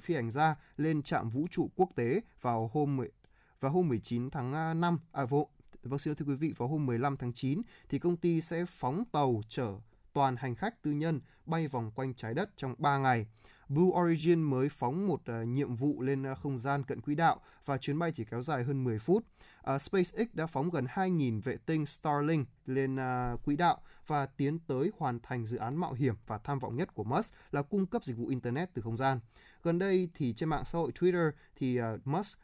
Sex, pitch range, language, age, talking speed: male, 125-160 Hz, Vietnamese, 20-39, 220 wpm